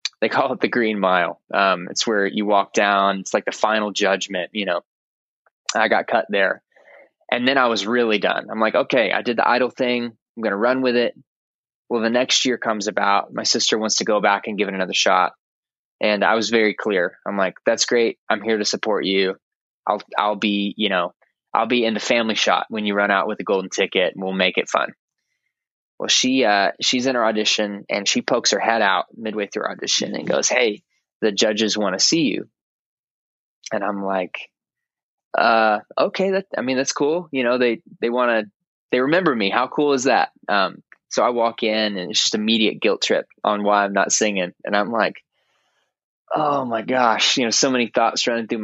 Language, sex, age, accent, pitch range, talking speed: English, male, 20-39, American, 100-120 Hz, 215 wpm